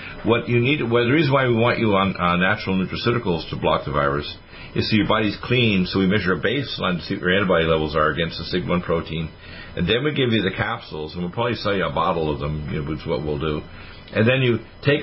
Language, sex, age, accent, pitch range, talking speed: English, male, 50-69, American, 90-115 Hz, 270 wpm